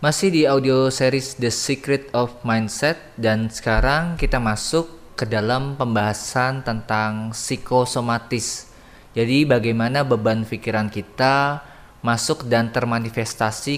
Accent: native